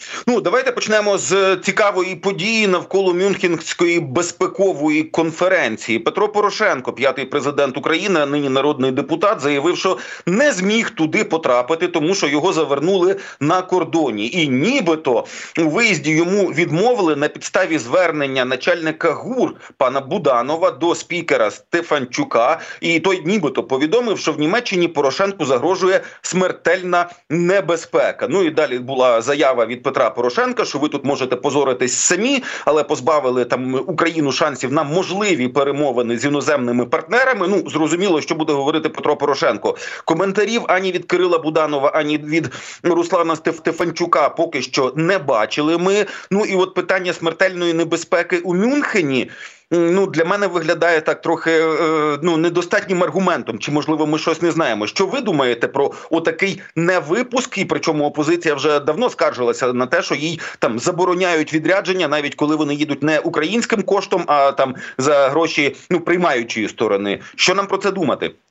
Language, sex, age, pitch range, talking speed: Ukrainian, male, 40-59, 150-185 Hz, 145 wpm